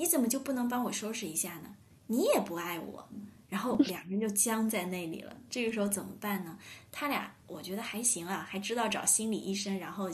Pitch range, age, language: 185-235 Hz, 20-39, Chinese